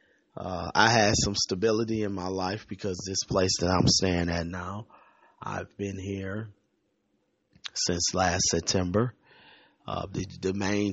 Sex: male